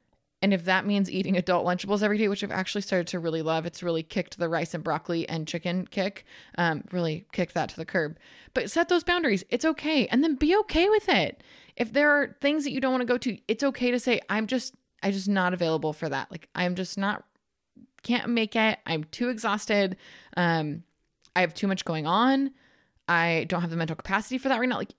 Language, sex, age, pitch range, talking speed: English, female, 20-39, 170-235 Hz, 230 wpm